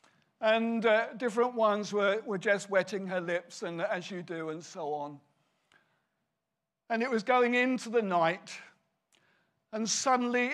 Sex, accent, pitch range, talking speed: male, British, 180-245 Hz, 150 wpm